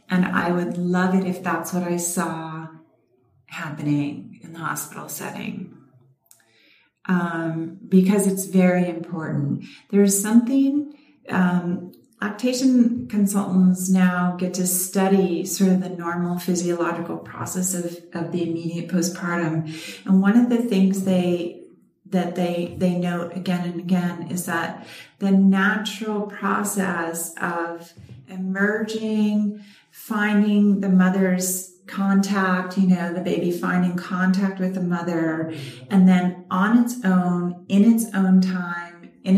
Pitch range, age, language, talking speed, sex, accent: 175-200 Hz, 40-59, English, 125 wpm, female, American